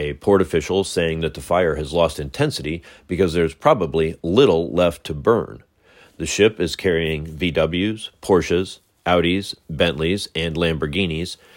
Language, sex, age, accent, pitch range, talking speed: English, male, 40-59, American, 80-90 Hz, 140 wpm